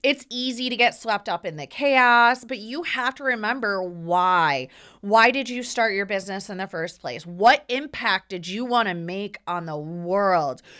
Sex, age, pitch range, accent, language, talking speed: female, 30-49, 205-270 Hz, American, English, 190 wpm